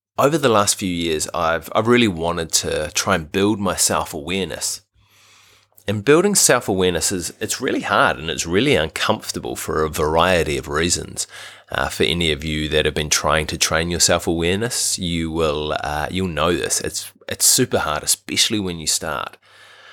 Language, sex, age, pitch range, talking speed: English, male, 30-49, 85-105 Hz, 175 wpm